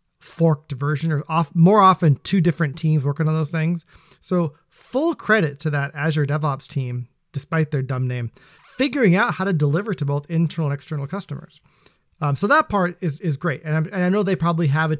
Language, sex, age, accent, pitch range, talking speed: English, male, 30-49, American, 140-175 Hz, 210 wpm